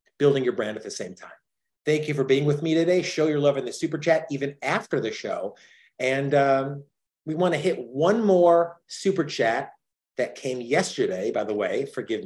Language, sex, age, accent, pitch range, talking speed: English, male, 30-49, American, 130-180 Hz, 205 wpm